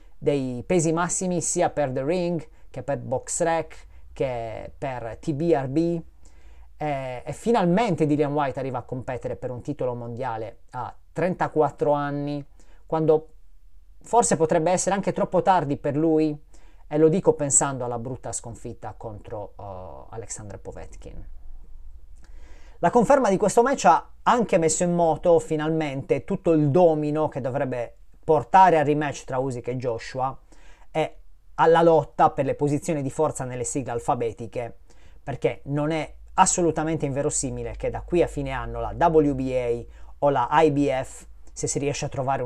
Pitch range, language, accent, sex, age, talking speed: 120-160 Hz, Italian, native, male, 30-49, 145 wpm